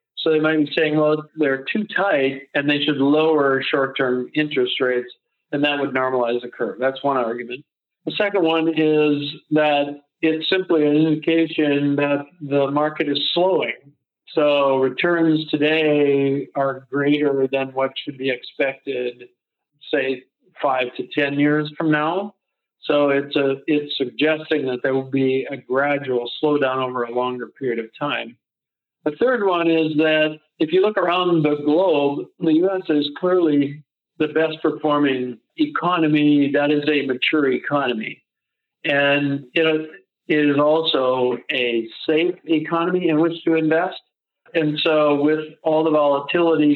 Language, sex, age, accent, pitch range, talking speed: English, male, 50-69, American, 135-155 Hz, 145 wpm